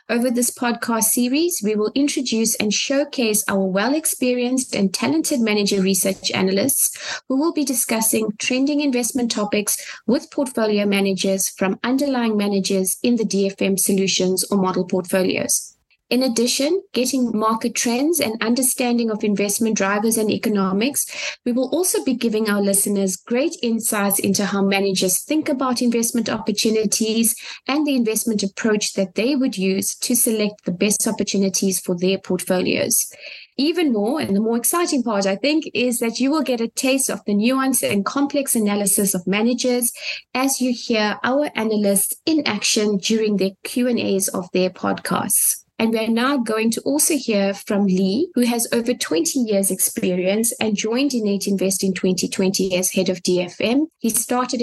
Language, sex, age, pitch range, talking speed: English, female, 20-39, 200-255 Hz, 160 wpm